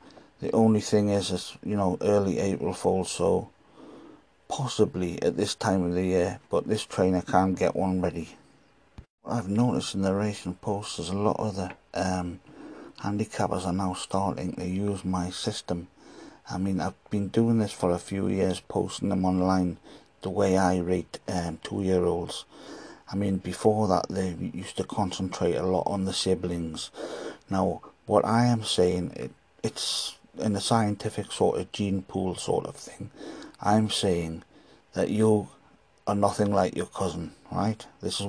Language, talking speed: English, 170 wpm